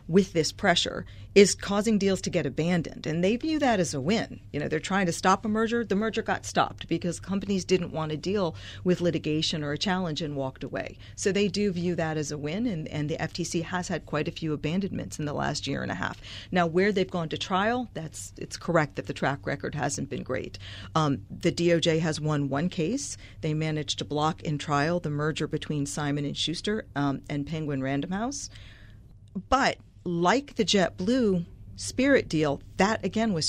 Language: English